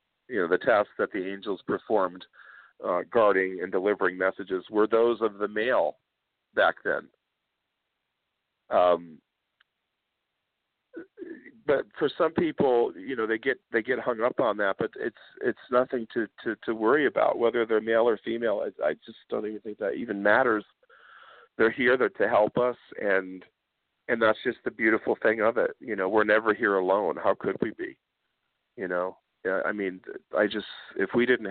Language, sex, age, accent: English, male, 50-69, American